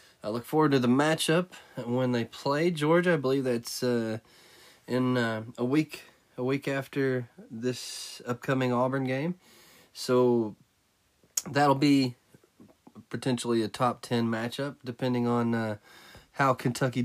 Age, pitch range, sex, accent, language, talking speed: 20-39, 115-130 Hz, male, American, English, 135 wpm